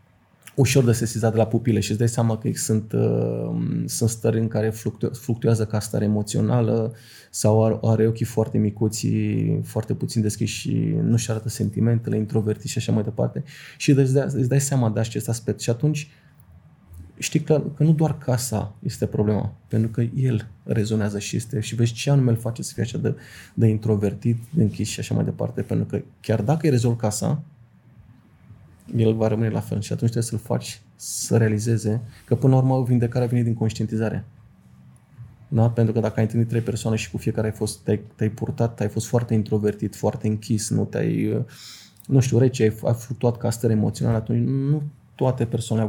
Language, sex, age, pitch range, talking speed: Romanian, male, 20-39, 110-125 Hz, 190 wpm